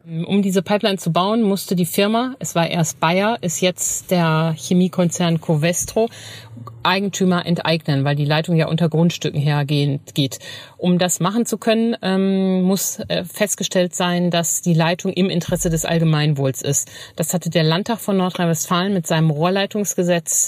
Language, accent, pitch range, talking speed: German, German, 160-185 Hz, 155 wpm